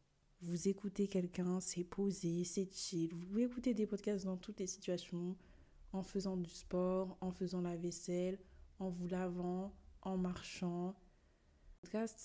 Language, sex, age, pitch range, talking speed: French, female, 20-39, 165-195 Hz, 145 wpm